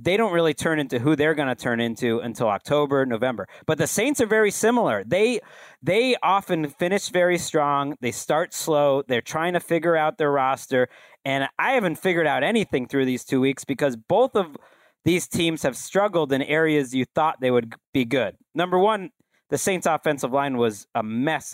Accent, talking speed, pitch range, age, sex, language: American, 195 wpm, 135-180 Hz, 40-59, male, English